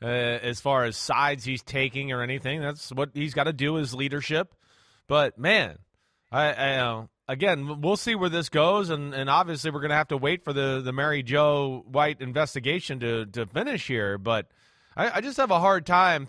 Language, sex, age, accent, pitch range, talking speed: English, male, 30-49, American, 130-185 Hz, 205 wpm